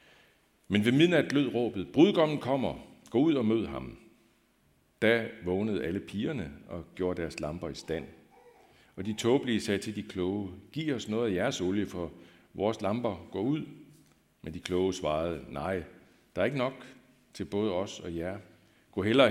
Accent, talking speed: native, 175 wpm